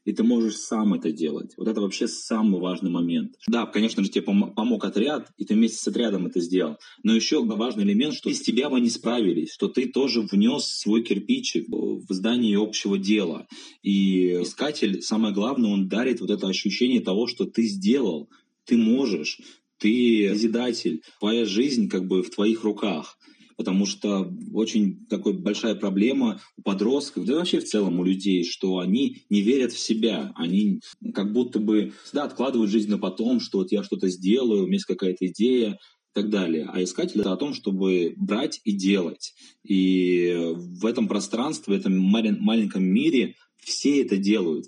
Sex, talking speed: male, 180 wpm